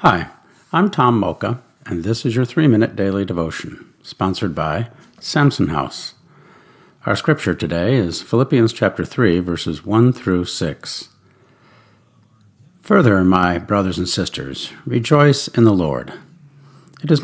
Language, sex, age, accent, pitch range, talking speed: English, male, 50-69, American, 95-130 Hz, 130 wpm